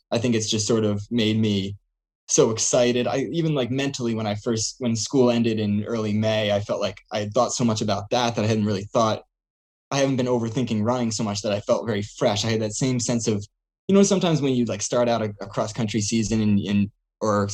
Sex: male